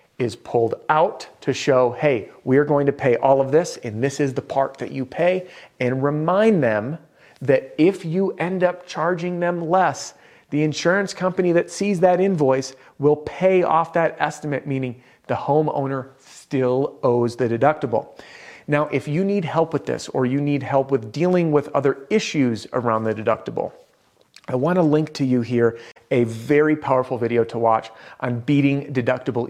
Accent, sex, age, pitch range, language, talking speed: American, male, 40-59, 125-160 Hz, English, 175 wpm